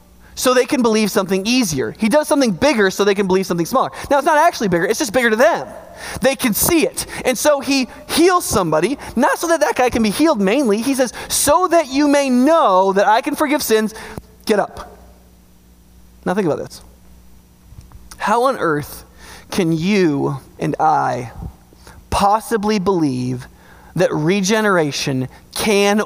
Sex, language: male, English